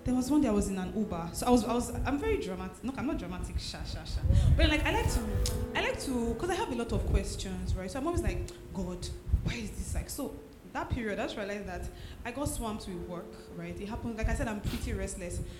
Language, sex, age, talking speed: English, female, 20-39, 270 wpm